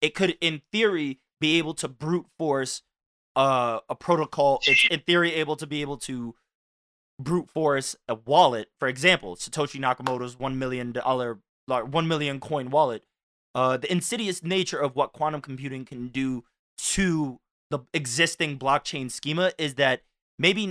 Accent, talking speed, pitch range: American, 150 wpm, 130-165 Hz